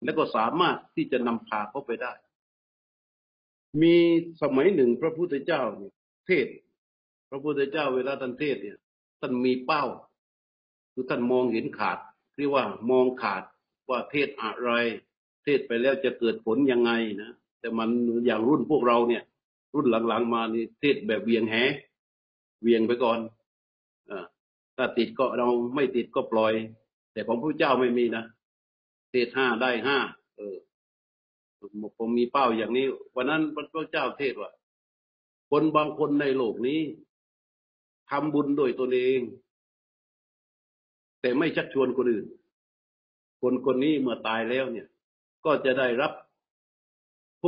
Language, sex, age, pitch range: Thai, male, 60-79, 115-140 Hz